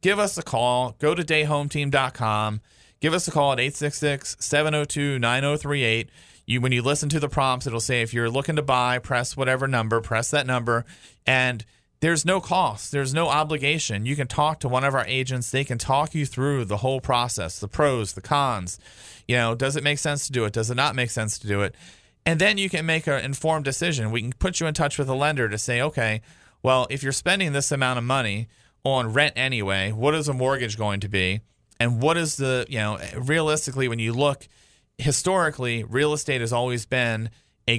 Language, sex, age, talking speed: English, male, 40-59, 210 wpm